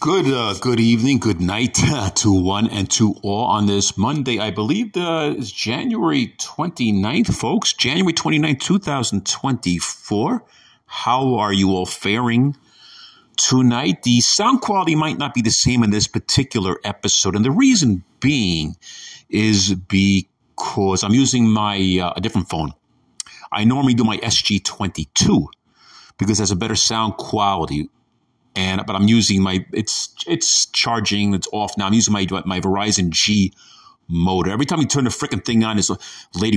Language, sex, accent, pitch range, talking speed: English, male, American, 95-120 Hz, 160 wpm